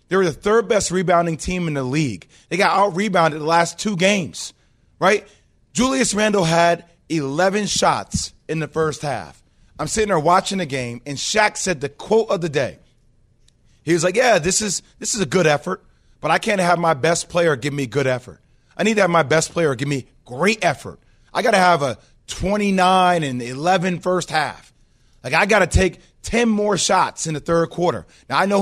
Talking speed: 200 wpm